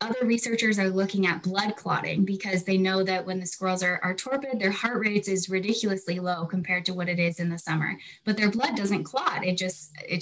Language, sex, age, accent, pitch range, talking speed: English, female, 10-29, American, 180-215 Hz, 230 wpm